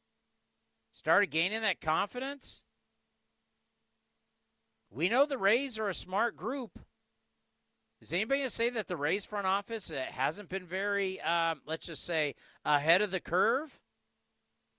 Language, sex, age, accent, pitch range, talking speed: English, male, 50-69, American, 160-225 Hz, 130 wpm